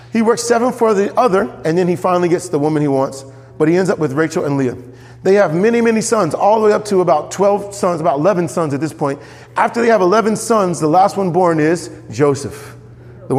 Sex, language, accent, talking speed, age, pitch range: male, English, American, 240 wpm, 40-59, 130-190 Hz